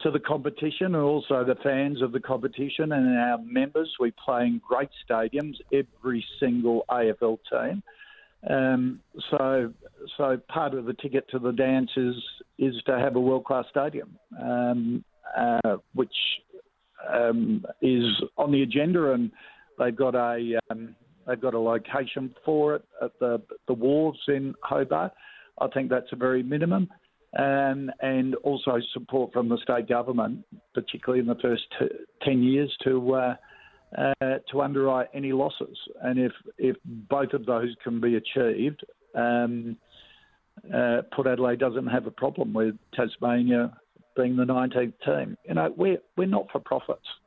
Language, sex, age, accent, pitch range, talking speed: English, male, 50-69, Australian, 120-145 Hz, 150 wpm